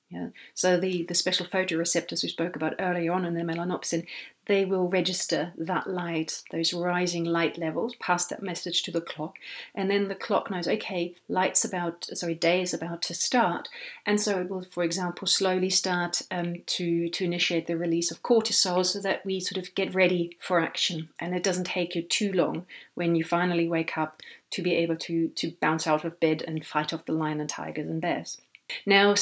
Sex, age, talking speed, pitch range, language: female, 40-59, 205 wpm, 170-190 Hz, English